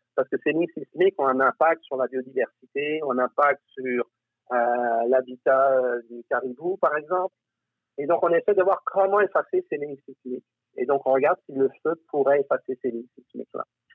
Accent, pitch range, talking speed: French, 125-170 Hz, 190 wpm